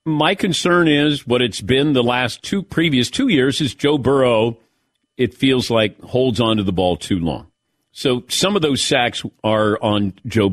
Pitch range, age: 110-155 Hz, 50-69